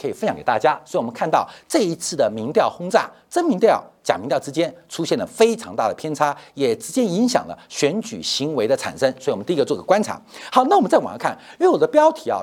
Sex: male